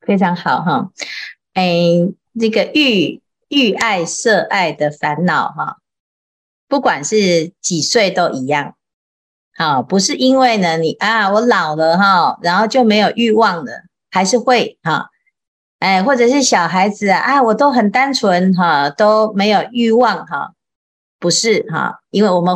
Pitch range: 170-235 Hz